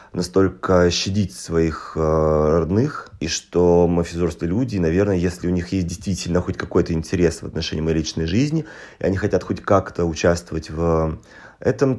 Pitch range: 80-100 Hz